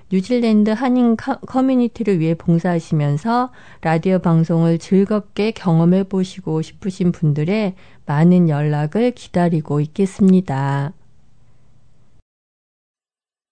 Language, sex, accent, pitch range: Korean, female, native, 165-220 Hz